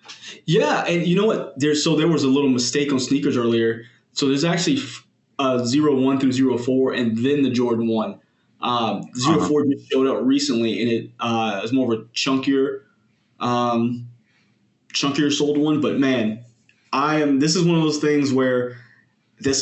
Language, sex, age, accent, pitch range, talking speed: English, male, 20-39, American, 115-140 Hz, 185 wpm